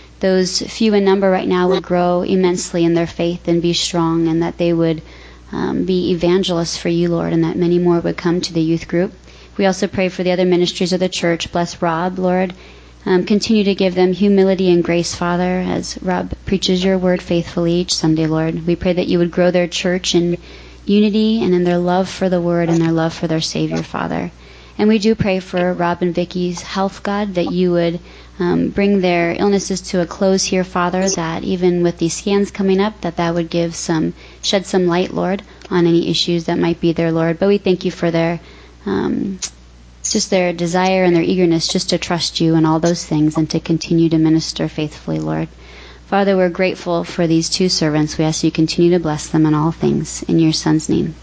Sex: female